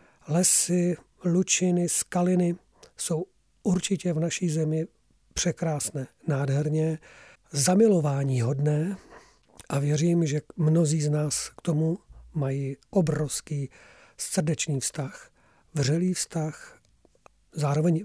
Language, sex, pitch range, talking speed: Czech, male, 150-180 Hz, 90 wpm